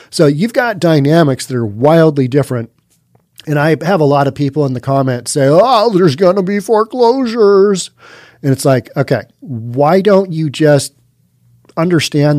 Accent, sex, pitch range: American, male, 130-180 Hz